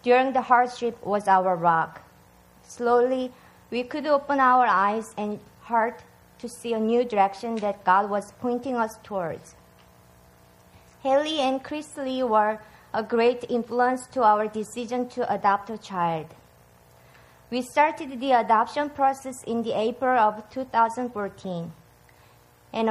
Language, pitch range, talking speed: English, 195-255 Hz, 135 wpm